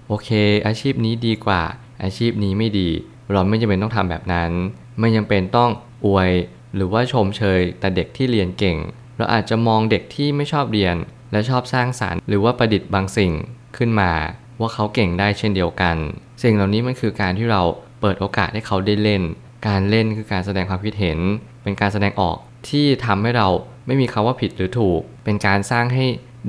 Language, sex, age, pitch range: Thai, male, 20-39, 95-115 Hz